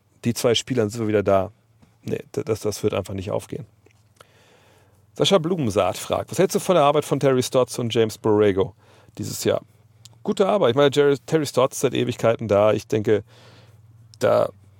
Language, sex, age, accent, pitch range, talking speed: German, male, 40-59, German, 100-120 Hz, 185 wpm